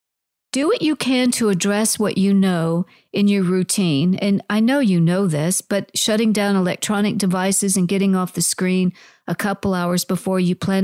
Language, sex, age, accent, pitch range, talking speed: English, female, 50-69, American, 180-225 Hz, 190 wpm